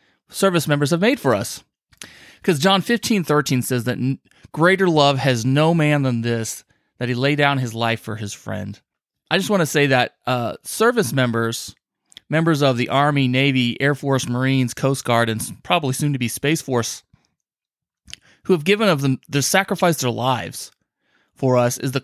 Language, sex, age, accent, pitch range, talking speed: English, male, 30-49, American, 125-165 Hz, 180 wpm